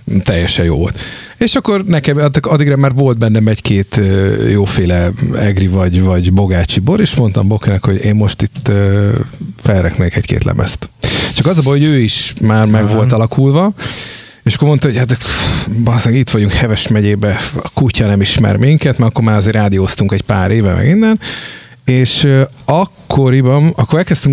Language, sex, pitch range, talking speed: Hungarian, male, 100-140 Hz, 165 wpm